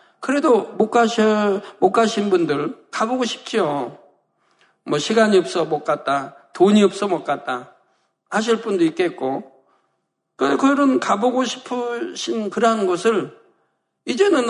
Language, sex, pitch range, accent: Korean, male, 200-260 Hz, native